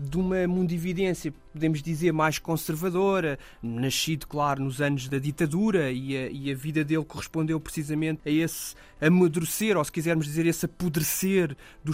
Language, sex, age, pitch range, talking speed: Portuguese, male, 20-39, 145-180 Hz, 150 wpm